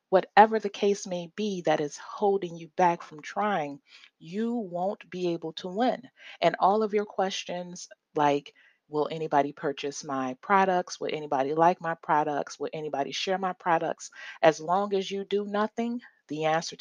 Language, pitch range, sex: English, 150-205 Hz, female